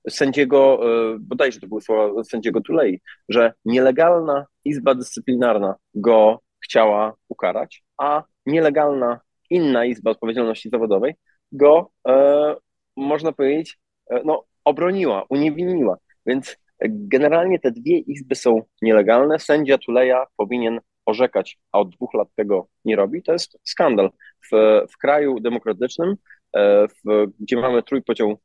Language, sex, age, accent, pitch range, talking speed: Polish, male, 20-39, native, 110-150 Hz, 120 wpm